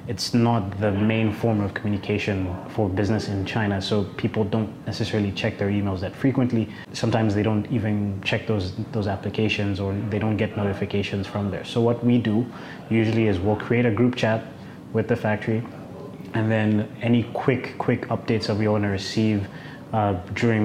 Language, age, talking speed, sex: English, 20-39, 180 wpm, male